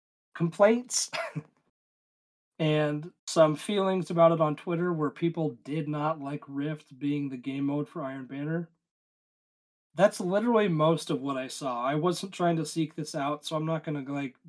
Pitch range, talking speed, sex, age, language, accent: 150-170 Hz, 165 wpm, male, 40-59, English, American